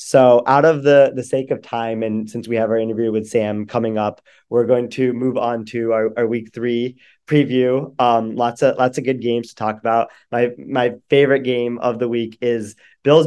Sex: male